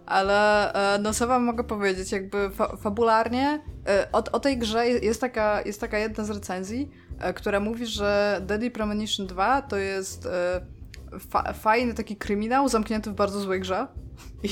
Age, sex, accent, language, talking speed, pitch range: 20-39, female, native, Polish, 145 wpm, 185-215 Hz